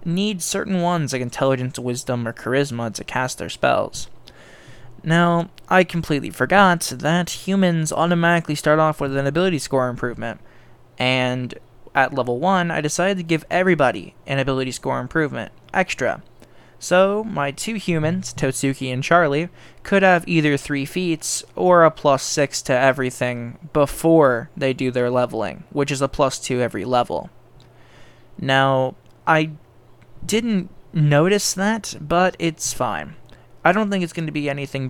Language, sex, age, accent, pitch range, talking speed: English, male, 10-29, American, 125-170 Hz, 150 wpm